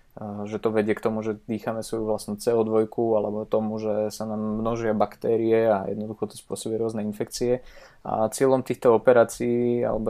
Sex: male